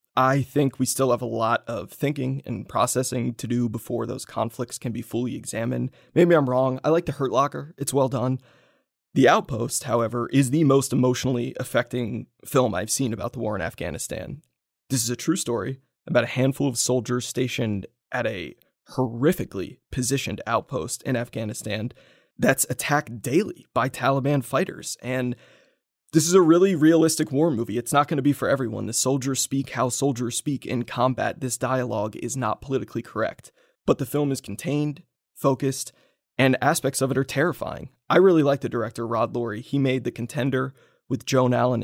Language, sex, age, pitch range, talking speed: English, male, 20-39, 120-135 Hz, 180 wpm